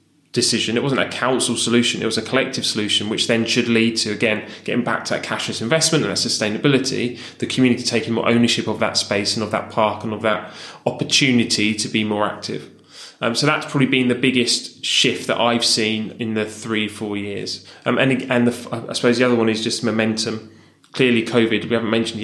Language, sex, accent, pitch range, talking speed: English, male, British, 110-120 Hz, 215 wpm